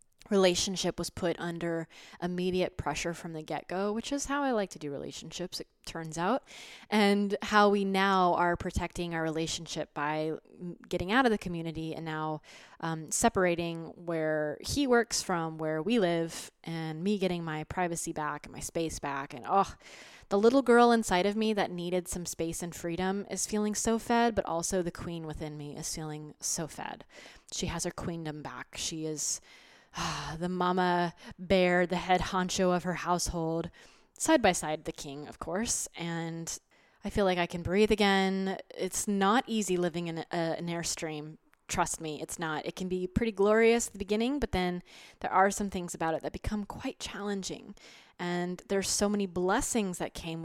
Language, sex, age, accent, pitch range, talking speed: English, female, 20-39, American, 160-195 Hz, 185 wpm